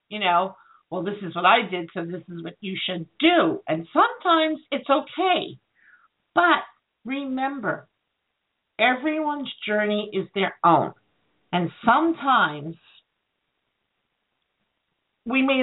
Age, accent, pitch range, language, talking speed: 50-69, American, 175-230 Hz, English, 115 wpm